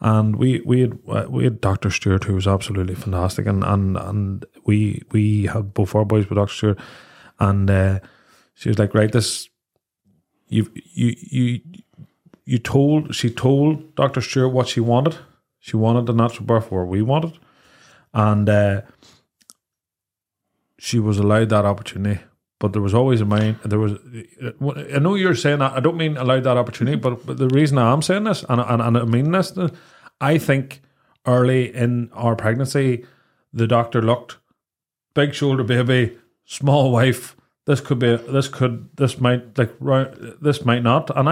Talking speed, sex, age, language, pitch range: 175 wpm, male, 30-49, English, 110-135 Hz